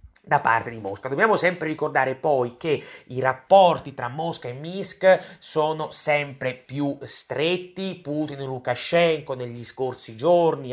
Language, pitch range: Italian, 130-180 Hz